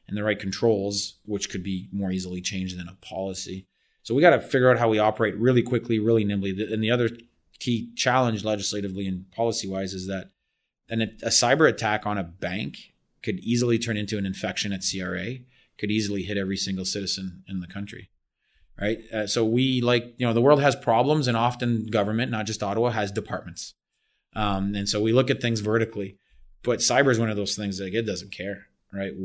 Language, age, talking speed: English, 30-49, 205 wpm